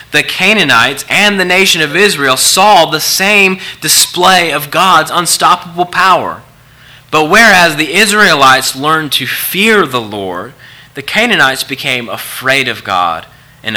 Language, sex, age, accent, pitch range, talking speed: English, male, 30-49, American, 120-155 Hz, 135 wpm